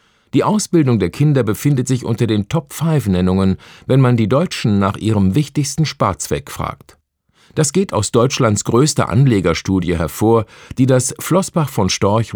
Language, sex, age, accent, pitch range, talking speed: German, male, 50-69, German, 95-150 Hz, 145 wpm